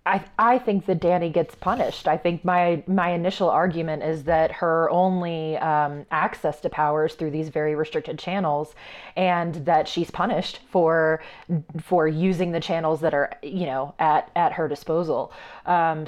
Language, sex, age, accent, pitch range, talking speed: English, female, 20-39, American, 155-180 Hz, 165 wpm